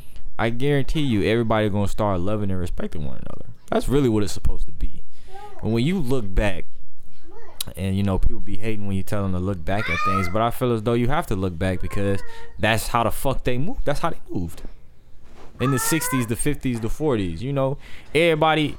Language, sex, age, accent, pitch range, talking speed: English, male, 20-39, American, 95-135 Hz, 225 wpm